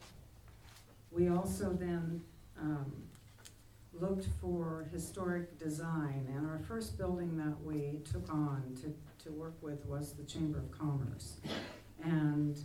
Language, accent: English, American